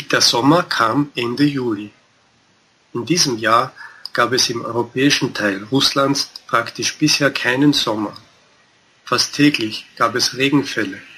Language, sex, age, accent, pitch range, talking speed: German, male, 40-59, German, 115-145 Hz, 125 wpm